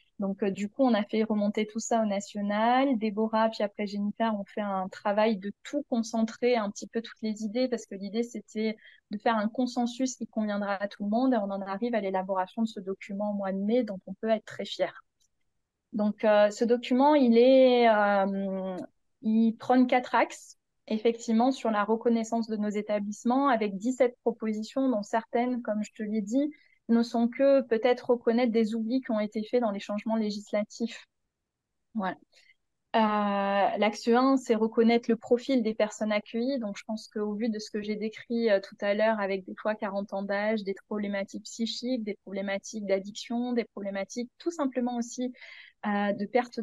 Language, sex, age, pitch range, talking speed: French, female, 20-39, 210-240 Hz, 195 wpm